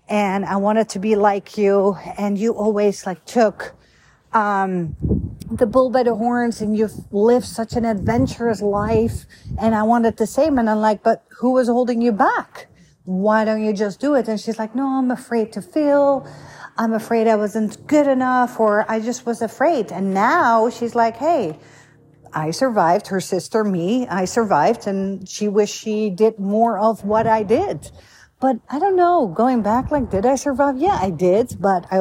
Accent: American